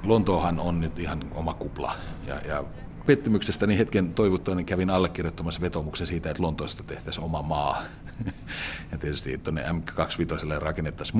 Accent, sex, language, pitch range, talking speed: native, male, Finnish, 80-95 Hz, 135 wpm